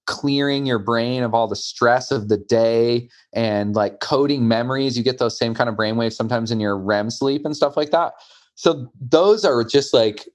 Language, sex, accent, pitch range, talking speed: English, male, American, 115-135 Hz, 205 wpm